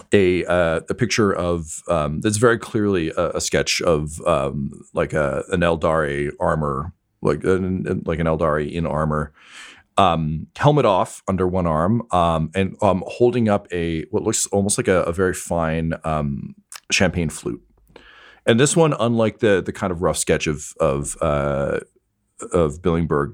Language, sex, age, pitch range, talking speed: English, male, 40-59, 75-100 Hz, 165 wpm